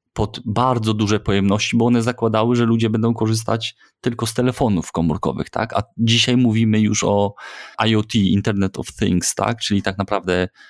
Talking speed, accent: 165 wpm, native